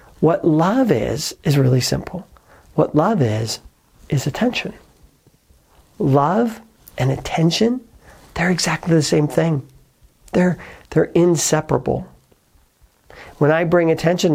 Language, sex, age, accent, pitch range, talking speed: English, male, 50-69, American, 135-165 Hz, 110 wpm